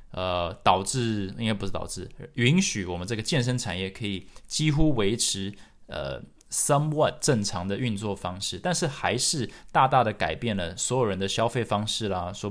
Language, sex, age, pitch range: Chinese, male, 20-39, 90-115 Hz